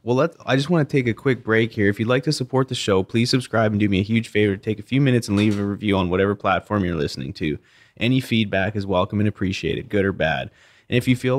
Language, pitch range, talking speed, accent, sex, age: English, 100-120 Hz, 280 wpm, American, male, 20-39